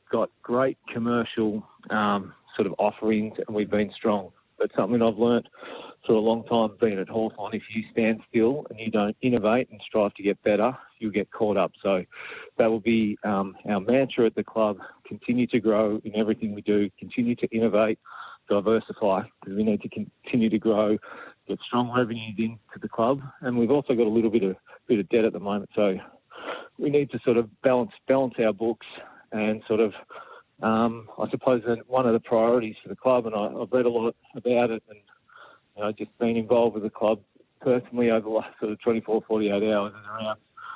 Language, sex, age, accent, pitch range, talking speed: English, male, 40-59, Australian, 110-120 Hz, 205 wpm